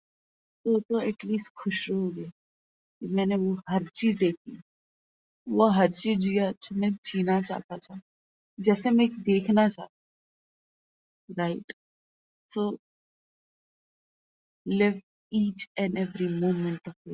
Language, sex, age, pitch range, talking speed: Hindi, female, 30-49, 180-215 Hz, 80 wpm